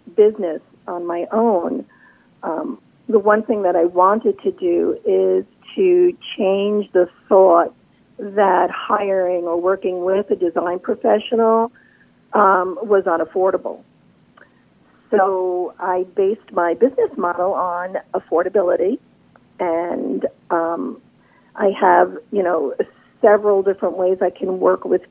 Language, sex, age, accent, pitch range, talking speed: English, female, 50-69, American, 180-225 Hz, 120 wpm